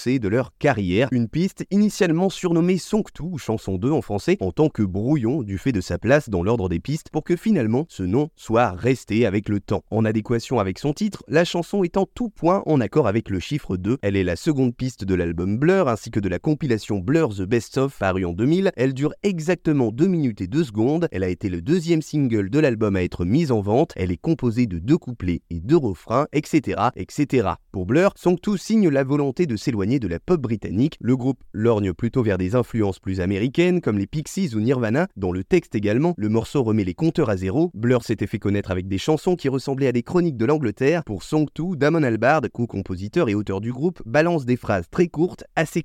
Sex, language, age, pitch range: male, French, 20-39, 105-165 Hz